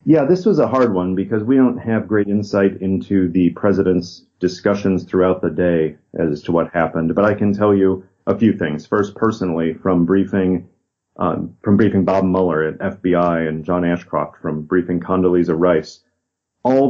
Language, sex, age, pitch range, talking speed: English, male, 40-59, 85-105 Hz, 180 wpm